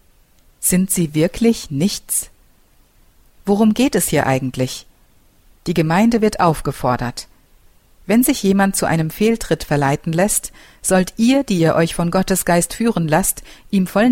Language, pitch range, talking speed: German, 145-195 Hz, 140 wpm